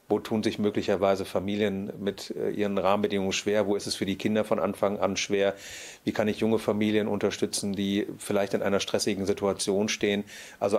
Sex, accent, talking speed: male, German, 185 wpm